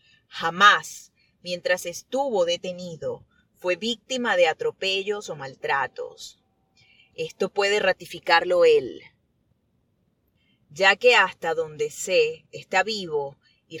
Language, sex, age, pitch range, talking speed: Spanish, female, 30-49, 160-245 Hz, 95 wpm